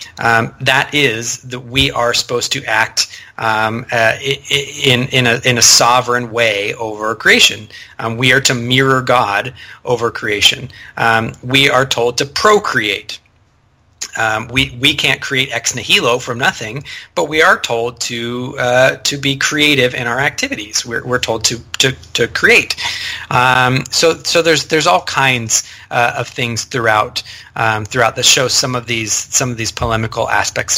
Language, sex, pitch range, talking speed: English, male, 115-135 Hz, 165 wpm